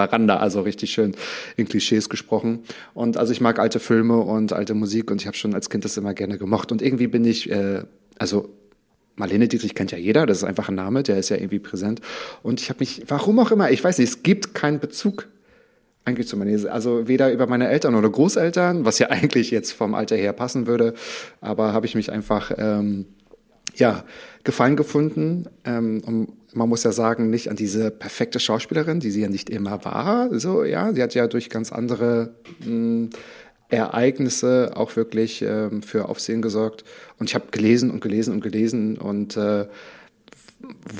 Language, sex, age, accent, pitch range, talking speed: German, male, 30-49, German, 105-125 Hz, 190 wpm